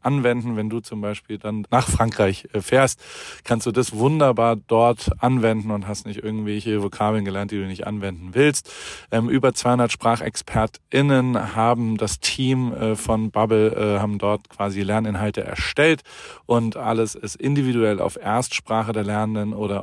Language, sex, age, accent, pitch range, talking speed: German, male, 40-59, German, 105-130 Hz, 145 wpm